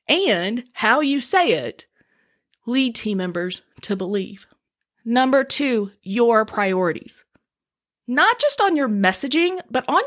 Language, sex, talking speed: English, female, 125 wpm